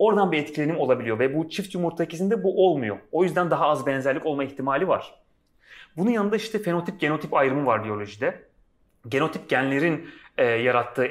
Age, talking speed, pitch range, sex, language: 30-49, 160 wpm, 135-195 Hz, male, Turkish